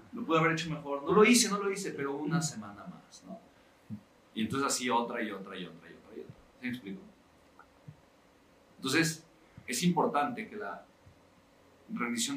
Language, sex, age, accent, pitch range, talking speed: Spanish, male, 40-59, Mexican, 135-185 Hz, 180 wpm